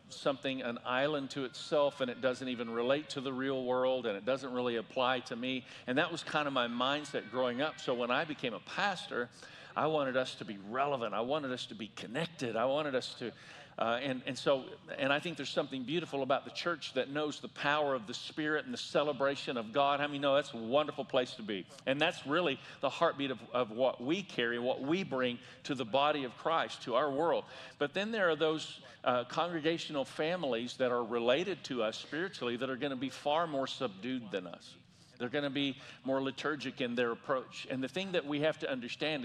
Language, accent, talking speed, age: English, American, 225 wpm, 50-69